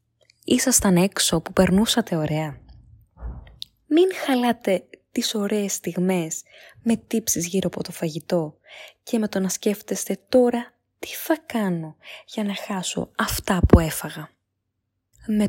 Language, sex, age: Greek, female, 20-39